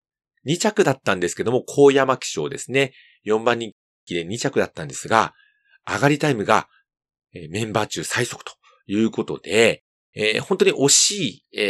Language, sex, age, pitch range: Japanese, male, 40-59, 110-180 Hz